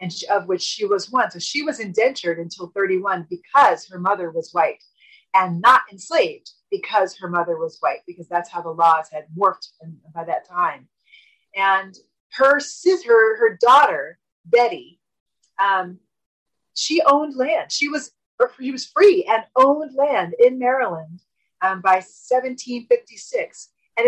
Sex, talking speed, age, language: female, 150 wpm, 30-49, English